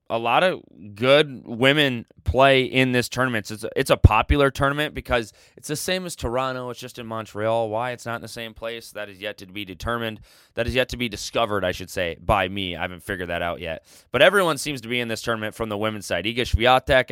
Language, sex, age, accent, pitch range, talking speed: English, male, 20-39, American, 110-135 Hz, 240 wpm